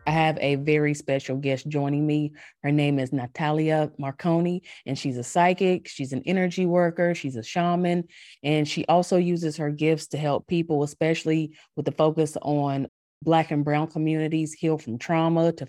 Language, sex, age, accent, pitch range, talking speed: English, female, 30-49, American, 135-165 Hz, 175 wpm